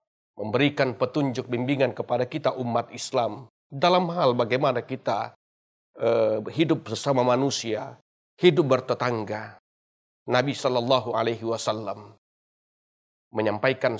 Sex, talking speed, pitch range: male, 95 wpm, 115-150 Hz